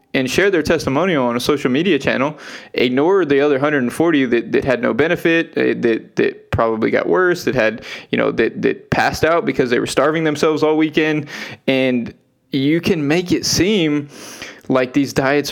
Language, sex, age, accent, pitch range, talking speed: English, male, 20-39, American, 120-145 Hz, 180 wpm